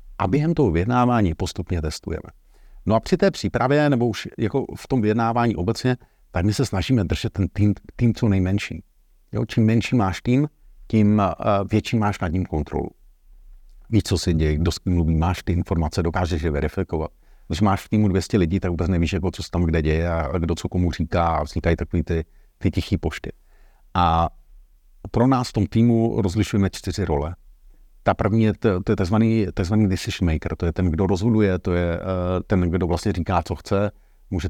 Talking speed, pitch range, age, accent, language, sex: 190 wpm, 85-110 Hz, 50-69, native, Czech, male